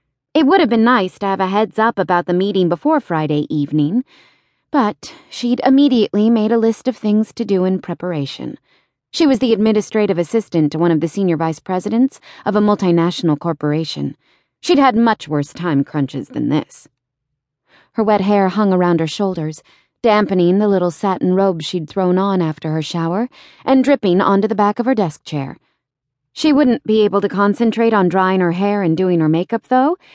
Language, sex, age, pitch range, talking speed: English, female, 30-49, 160-235 Hz, 185 wpm